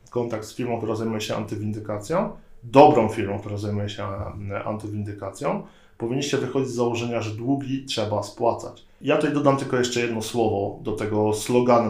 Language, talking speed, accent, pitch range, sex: Polish, 155 wpm, native, 115-130 Hz, male